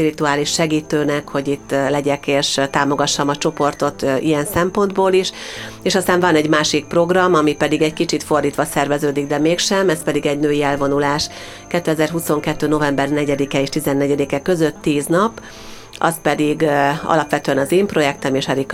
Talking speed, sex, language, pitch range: 155 wpm, female, Hungarian, 140-160 Hz